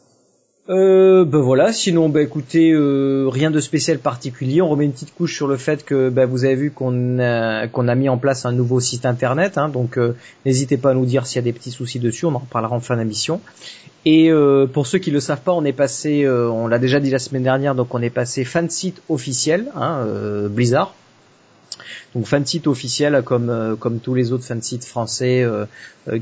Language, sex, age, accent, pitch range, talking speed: French, male, 30-49, French, 120-145 Hz, 225 wpm